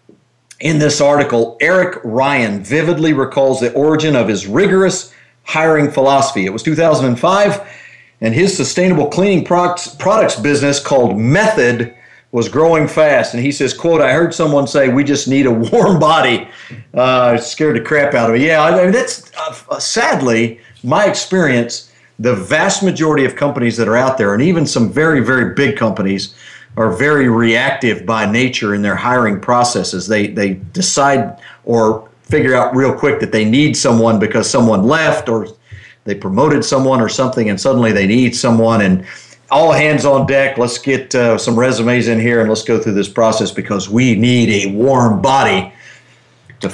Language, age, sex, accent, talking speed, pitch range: English, 50-69, male, American, 170 wpm, 115-150 Hz